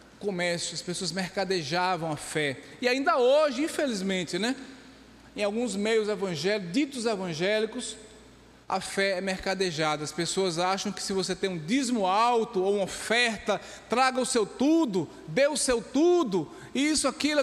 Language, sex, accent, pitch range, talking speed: Portuguese, male, Brazilian, 185-245 Hz, 150 wpm